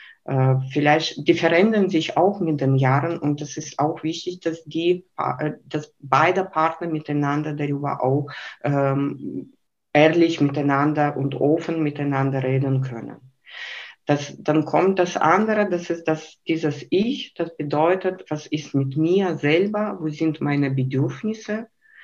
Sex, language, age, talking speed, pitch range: female, German, 50-69, 135 wpm, 145-180 Hz